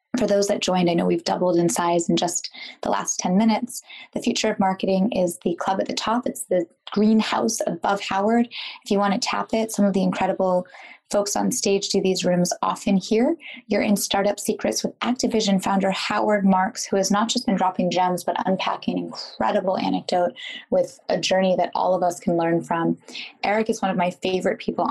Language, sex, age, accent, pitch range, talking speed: English, female, 20-39, American, 180-215 Hz, 205 wpm